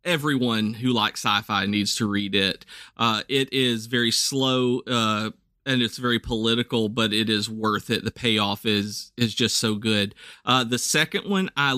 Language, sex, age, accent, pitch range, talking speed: English, male, 40-59, American, 110-130 Hz, 175 wpm